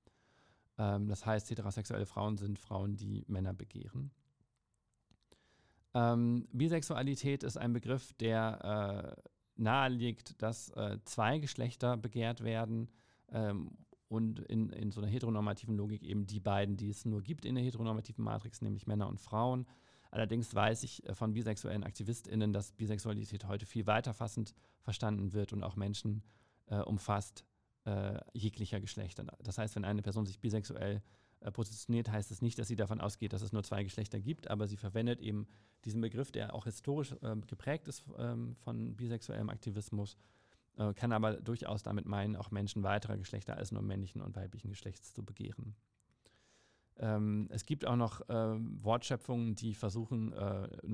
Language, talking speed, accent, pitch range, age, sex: German, 150 wpm, German, 105-120 Hz, 40-59, male